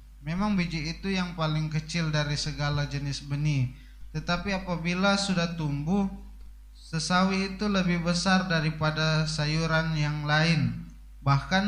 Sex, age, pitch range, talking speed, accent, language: male, 20-39, 155-180 Hz, 120 wpm, native, Indonesian